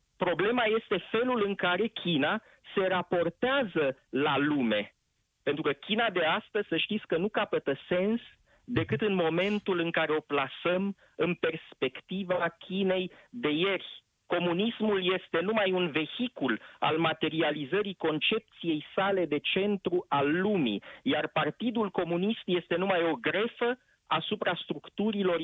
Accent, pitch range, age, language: native, 165-215 Hz, 40-59, Romanian